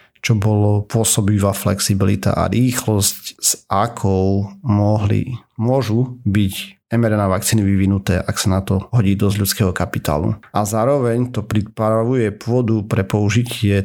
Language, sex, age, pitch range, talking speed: Slovak, male, 40-59, 100-115 Hz, 130 wpm